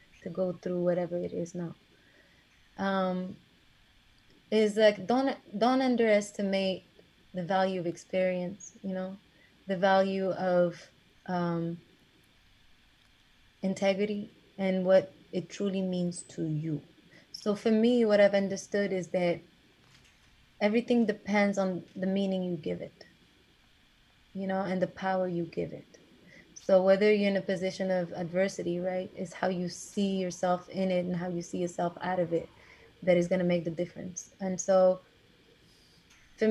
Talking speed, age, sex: 145 wpm, 20-39, female